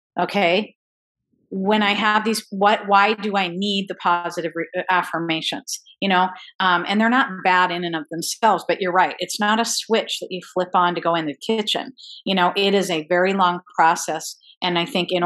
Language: English